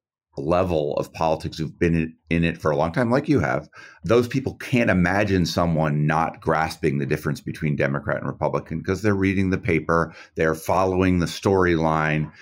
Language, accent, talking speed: English, American, 175 wpm